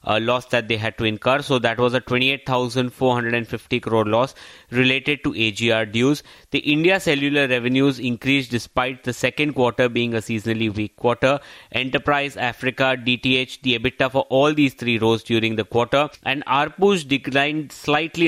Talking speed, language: 160 wpm, English